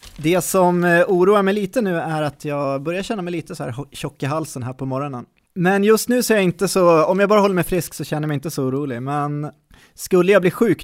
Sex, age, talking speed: male, 20-39, 260 wpm